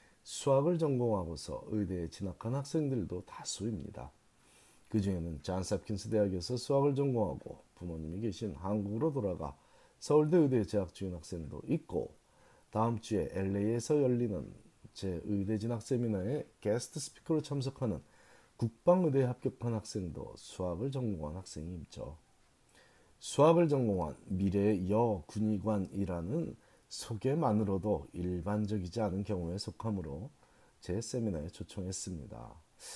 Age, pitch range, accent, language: 40-59, 95-125 Hz, native, Korean